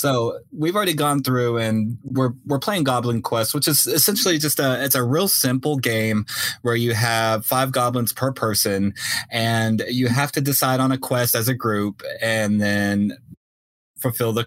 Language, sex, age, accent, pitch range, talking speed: English, male, 20-39, American, 105-130 Hz, 180 wpm